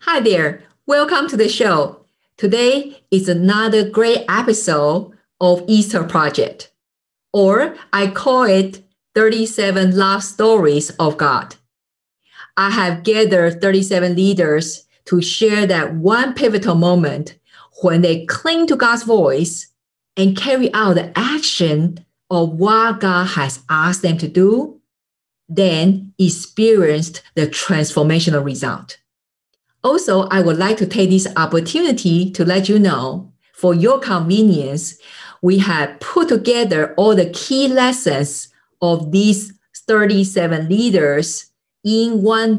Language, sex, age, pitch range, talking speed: English, female, 50-69, 170-220 Hz, 125 wpm